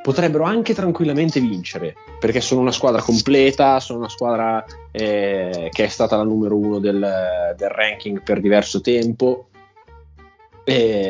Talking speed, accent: 140 wpm, native